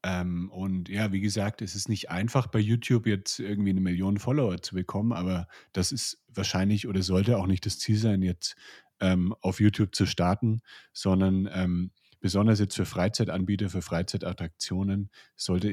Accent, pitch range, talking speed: German, 90-100 Hz, 170 wpm